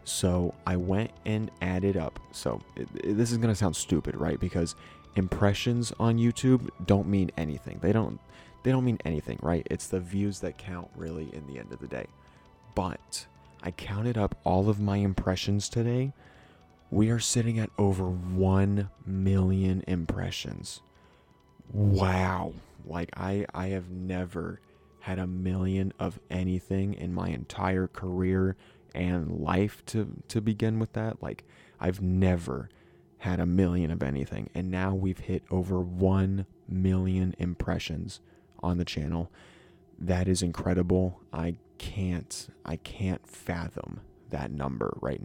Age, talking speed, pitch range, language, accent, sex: 20-39, 145 wpm, 90-100 Hz, English, American, male